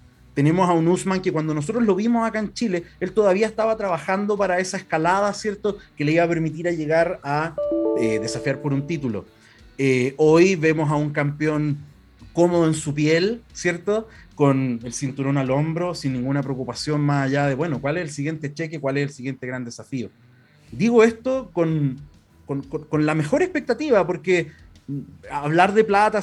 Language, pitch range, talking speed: Spanish, 150-195 Hz, 180 wpm